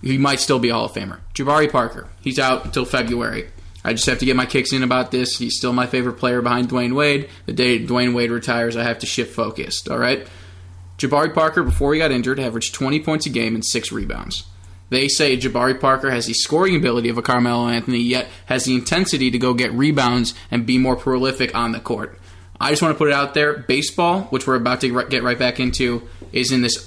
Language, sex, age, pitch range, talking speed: English, male, 20-39, 120-135 Hz, 235 wpm